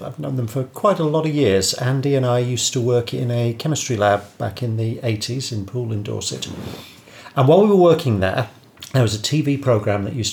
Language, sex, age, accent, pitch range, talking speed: English, male, 40-59, British, 105-130 Hz, 230 wpm